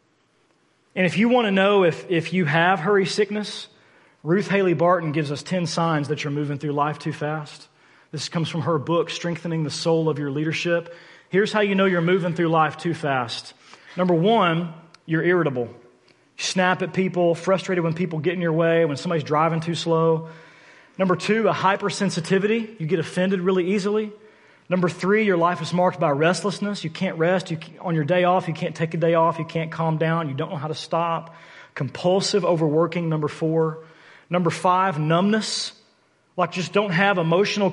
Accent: American